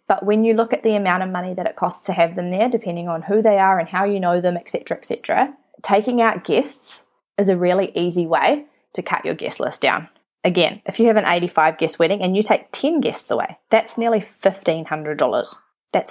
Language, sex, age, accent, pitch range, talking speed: English, female, 20-39, Australian, 175-210 Hz, 225 wpm